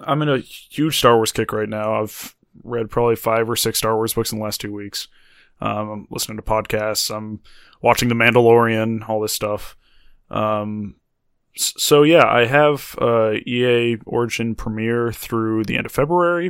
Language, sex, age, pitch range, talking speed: English, male, 20-39, 110-130 Hz, 180 wpm